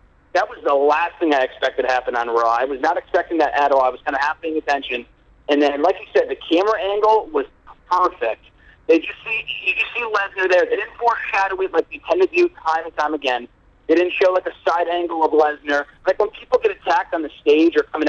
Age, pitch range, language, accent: 40-59, 145-185 Hz, English, American